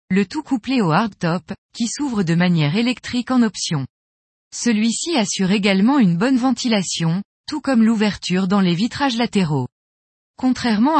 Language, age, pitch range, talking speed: French, 20-39, 175-245 Hz, 140 wpm